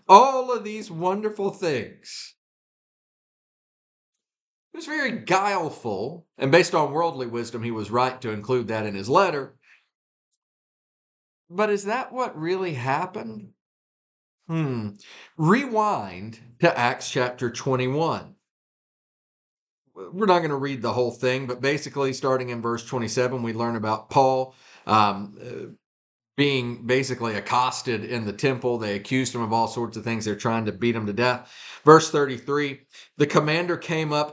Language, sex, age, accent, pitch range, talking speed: English, male, 50-69, American, 120-180 Hz, 145 wpm